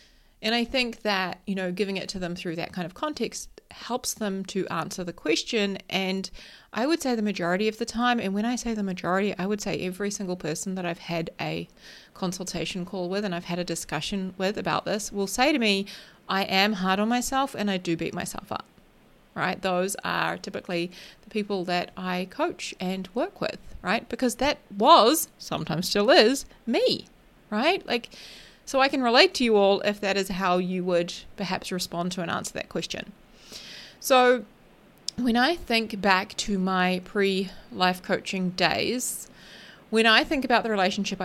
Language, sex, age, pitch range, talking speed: English, female, 30-49, 180-220 Hz, 190 wpm